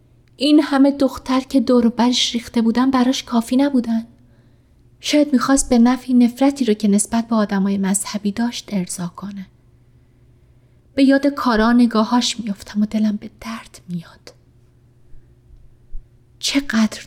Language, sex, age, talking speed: Persian, female, 30-49, 125 wpm